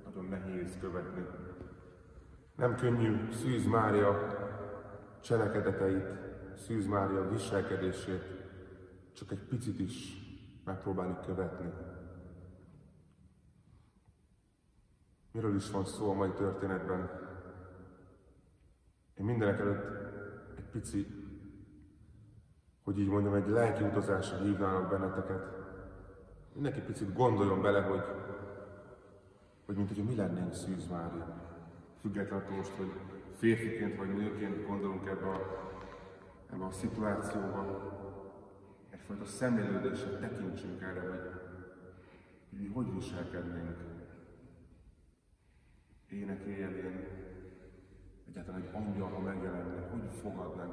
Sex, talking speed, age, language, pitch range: male, 90 wpm, 30-49, Hungarian, 95-100 Hz